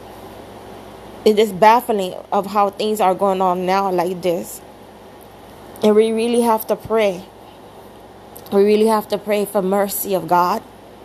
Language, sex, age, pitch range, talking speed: English, female, 20-39, 190-220 Hz, 145 wpm